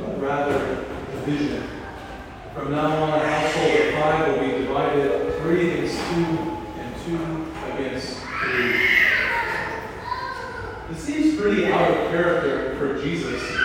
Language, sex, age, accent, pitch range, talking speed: English, male, 30-49, American, 145-190 Hz, 110 wpm